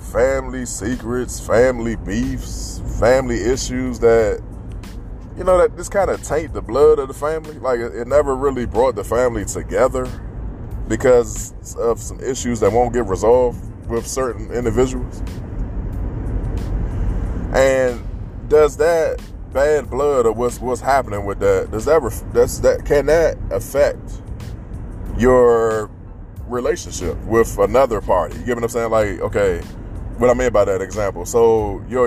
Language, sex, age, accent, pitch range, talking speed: English, male, 20-39, American, 100-120 Hz, 145 wpm